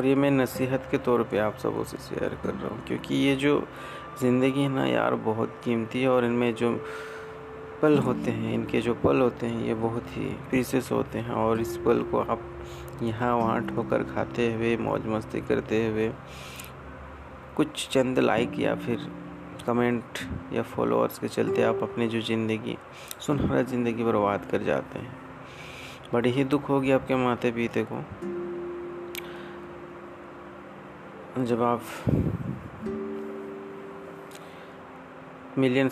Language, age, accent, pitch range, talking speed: Hindi, 30-49, native, 100-130 Hz, 145 wpm